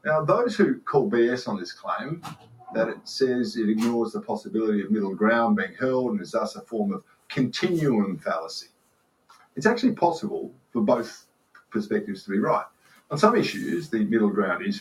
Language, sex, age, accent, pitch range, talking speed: English, male, 50-69, Australian, 125-210 Hz, 180 wpm